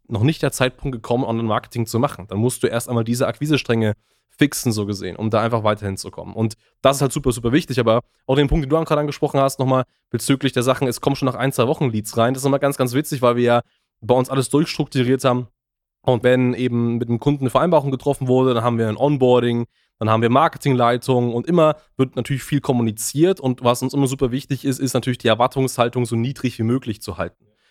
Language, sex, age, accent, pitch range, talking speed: German, male, 20-39, German, 115-135 Hz, 235 wpm